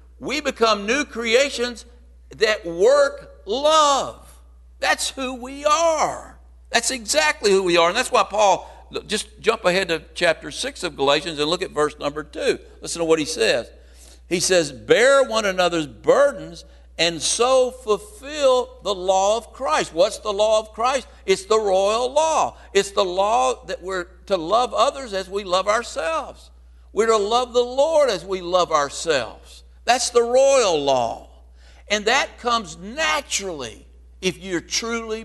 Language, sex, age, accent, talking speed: English, male, 60-79, American, 160 wpm